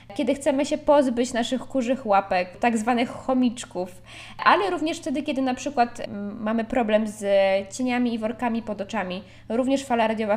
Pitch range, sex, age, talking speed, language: 205-250 Hz, female, 20-39, 155 wpm, Polish